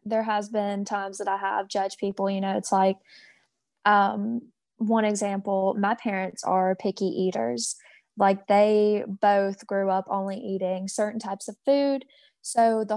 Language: English